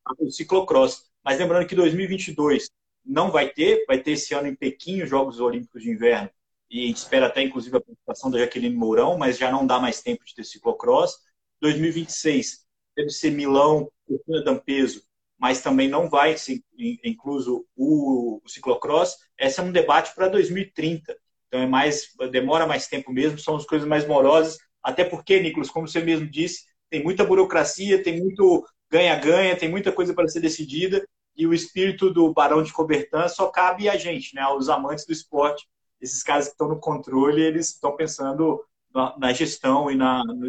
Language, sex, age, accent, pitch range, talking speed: Portuguese, male, 30-49, Brazilian, 140-185 Hz, 180 wpm